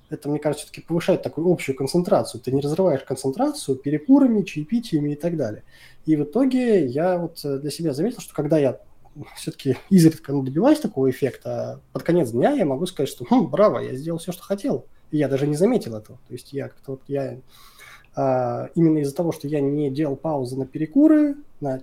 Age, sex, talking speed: 20-39, male, 190 wpm